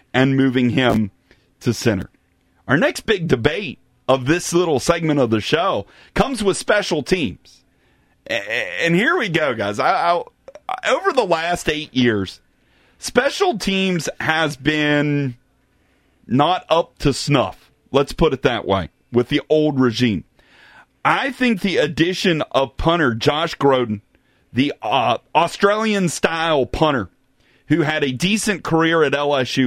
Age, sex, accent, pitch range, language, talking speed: 30-49, male, American, 135-195 Hz, English, 140 wpm